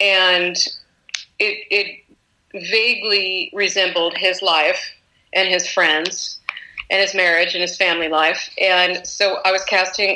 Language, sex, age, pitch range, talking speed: English, female, 30-49, 175-200 Hz, 130 wpm